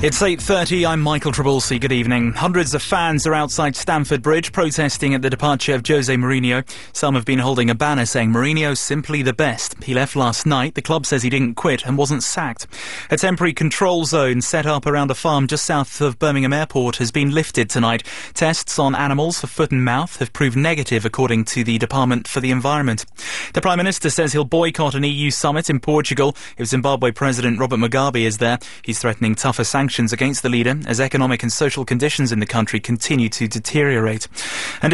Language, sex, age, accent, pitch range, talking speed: English, male, 30-49, British, 125-155 Hz, 200 wpm